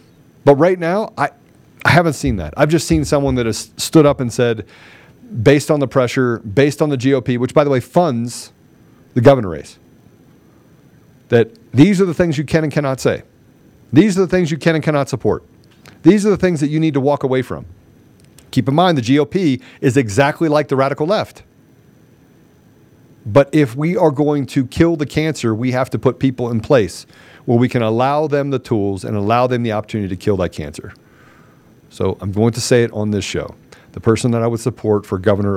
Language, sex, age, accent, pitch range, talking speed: English, male, 40-59, American, 100-140 Hz, 210 wpm